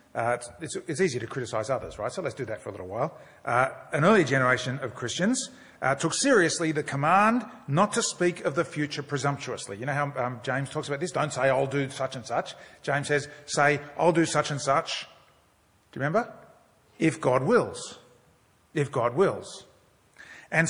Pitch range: 140-195 Hz